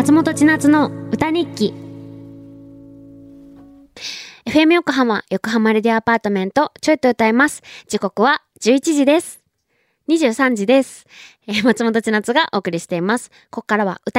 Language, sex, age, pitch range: Japanese, female, 20-39, 185-260 Hz